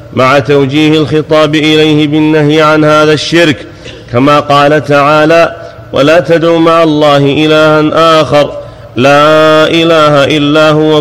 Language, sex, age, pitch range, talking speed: Arabic, male, 30-49, 145-155 Hz, 115 wpm